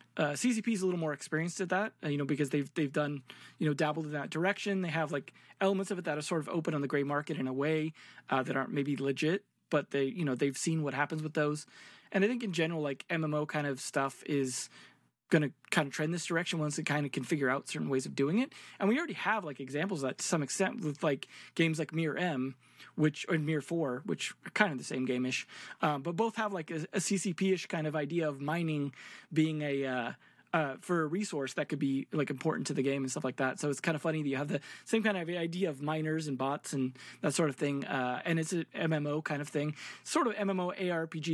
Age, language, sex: 20-39, English, male